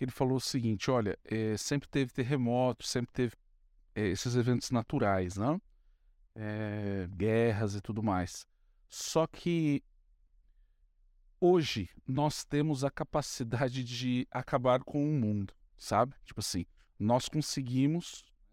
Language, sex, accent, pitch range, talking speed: Portuguese, male, Brazilian, 105-150 Hz, 125 wpm